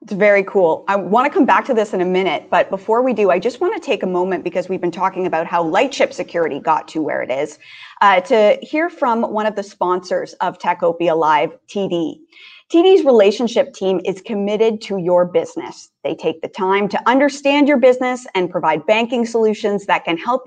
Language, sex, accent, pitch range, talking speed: English, female, American, 185-270 Hz, 210 wpm